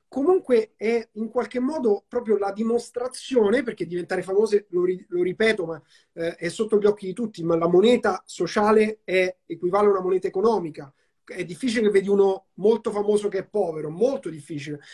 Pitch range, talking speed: 175-220 Hz, 180 wpm